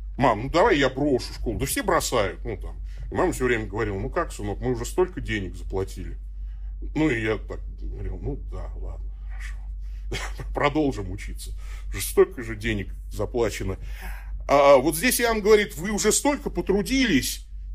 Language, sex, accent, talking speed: Russian, male, native, 160 wpm